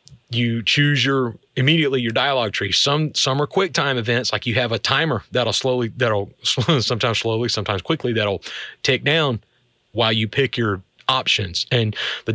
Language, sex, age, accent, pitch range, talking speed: English, male, 30-49, American, 110-140 Hz, 170 wpm